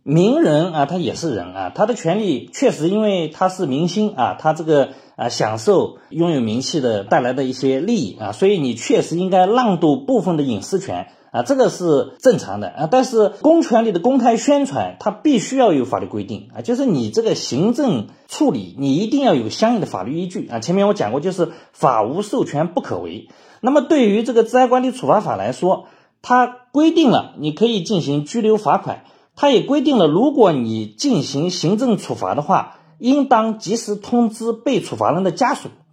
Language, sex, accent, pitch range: Chinese, male, native, 170-245 Hz